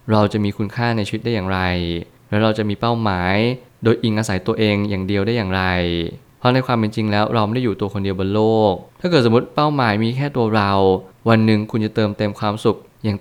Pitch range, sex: 100-120 Hz, male